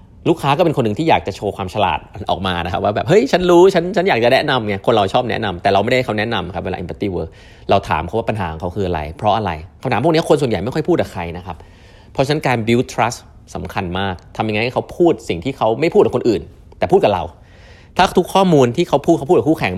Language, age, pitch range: Thai, 30-49, 95-125 Hz